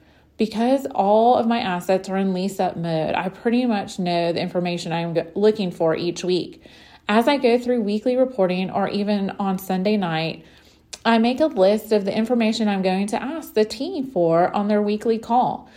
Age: 30-49